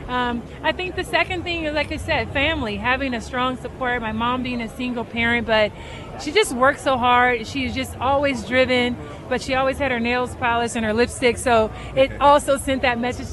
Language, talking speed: English, 210 wpm